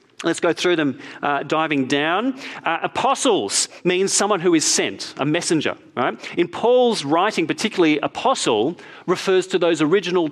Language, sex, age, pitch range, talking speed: English, male, 40-59, 140-210 Hz, 150 wpm